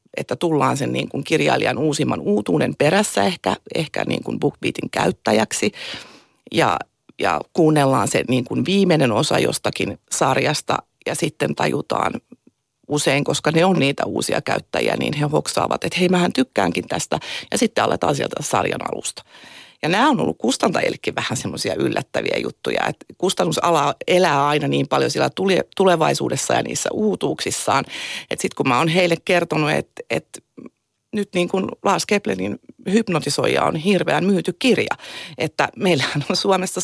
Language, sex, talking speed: Finnish, female, 140 wpm